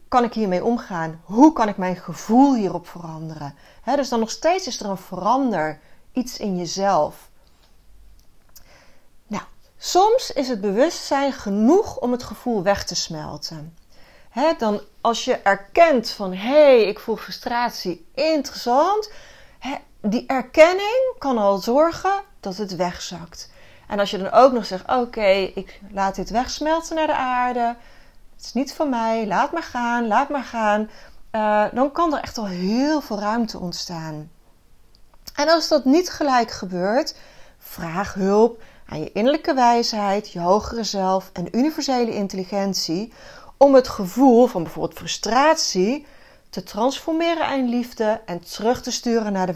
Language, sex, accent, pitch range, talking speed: Dutch, female, Dutch, 190-270 Hz, 150 wpm